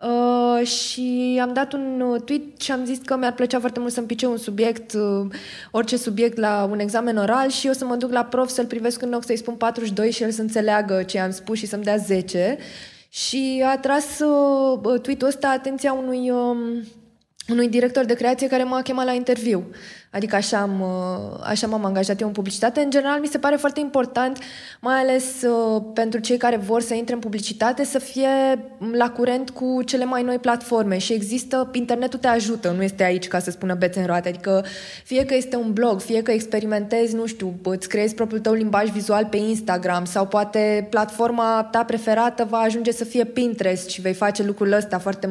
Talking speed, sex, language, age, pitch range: 205 wpm, female, Romanian, 20-39, 210-250 Hz